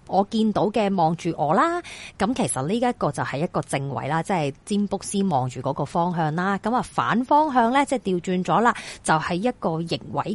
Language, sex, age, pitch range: Chinese, female, 30-49, 160-225 Hz